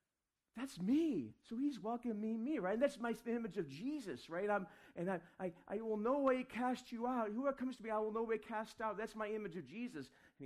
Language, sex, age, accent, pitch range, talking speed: English, male, 40-59, American, 120-200 Hz, 240 wpm